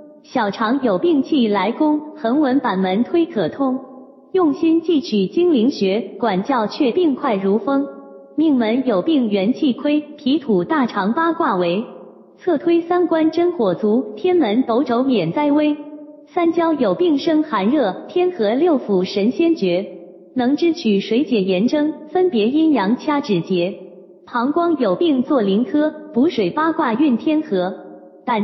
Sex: female